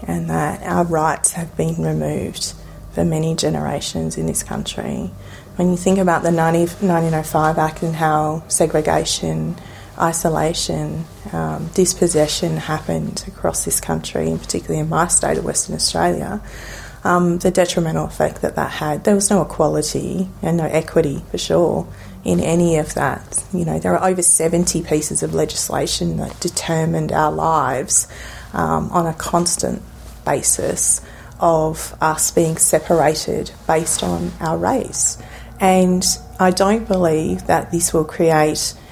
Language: English